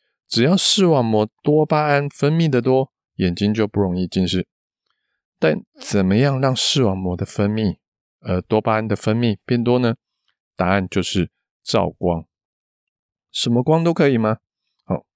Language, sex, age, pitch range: Chinese, male, 20-39, 100-135 Hz